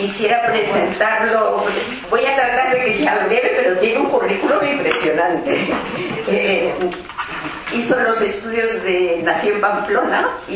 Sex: female